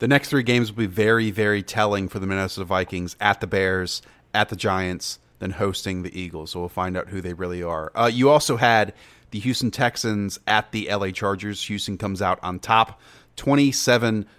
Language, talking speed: English, 200 wpm